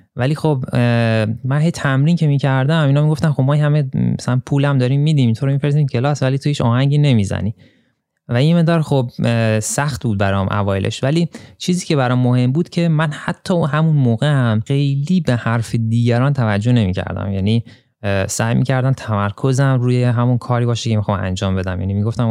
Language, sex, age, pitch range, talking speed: Persian, male, 20-39, 110-140 Hz, 180 wpm